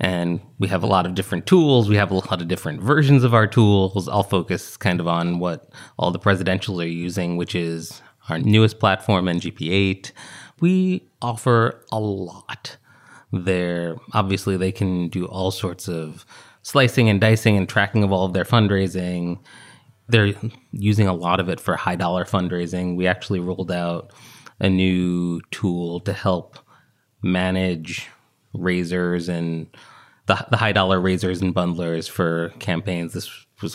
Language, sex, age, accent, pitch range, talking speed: English, male, 30-49, American, 90-105 Hz, 160 wpm